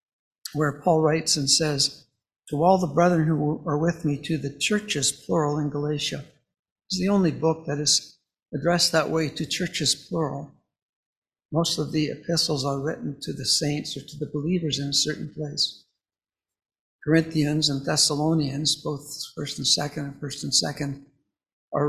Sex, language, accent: male, English, American